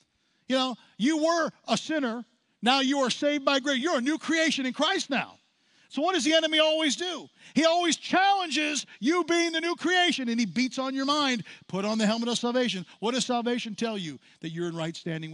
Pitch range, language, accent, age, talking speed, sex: 190-280 Hz, English, American, 50-69, 220 wpm, male